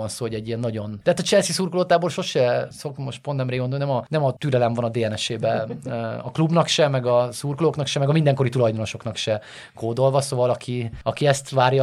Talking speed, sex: 210 wpm, male